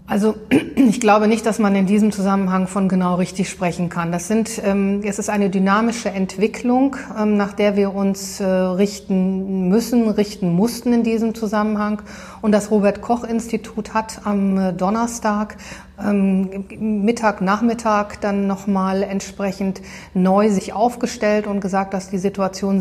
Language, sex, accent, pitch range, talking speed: German, female, German, 190-220 Hz, 130 wpm